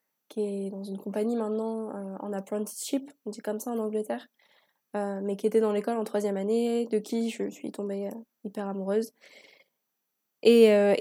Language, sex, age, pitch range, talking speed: French, female, 20-39, 210-240 Hz, 185 wpm